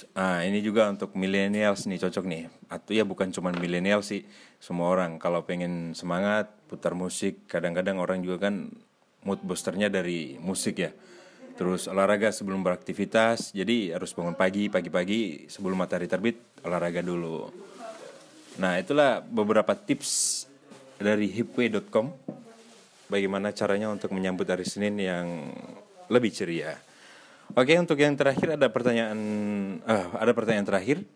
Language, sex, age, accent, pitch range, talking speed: Indonesian, male, 30-49, native, 95-115 Hz, 135 wpm